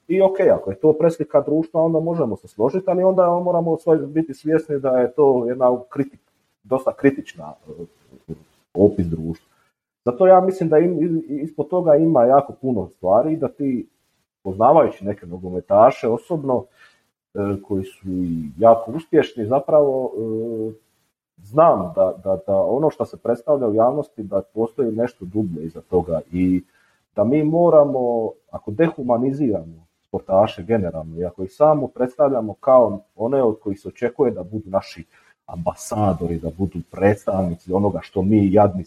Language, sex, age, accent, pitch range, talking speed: Croatian, male, 40-59, native, 95-145 Hz, 145 wpm